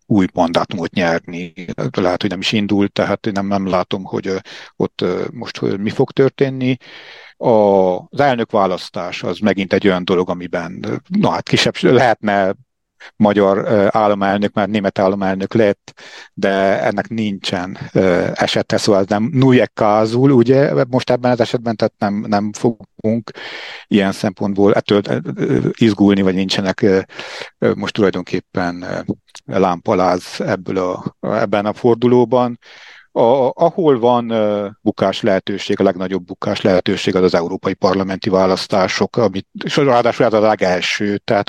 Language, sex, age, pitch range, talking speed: Hungarian, male, 60-79, 95-115 Hz, 130 wpm